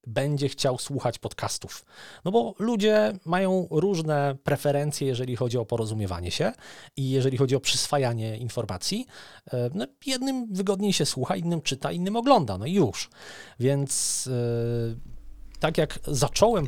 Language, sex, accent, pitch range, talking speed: Polish, male, native, 125-160 Hz, 130 wpm